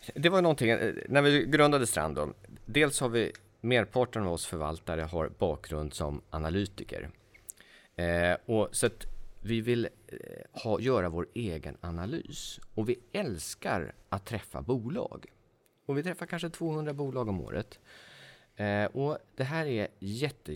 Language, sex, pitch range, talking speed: Swedish, male, 90-135 Hz, 145 wpm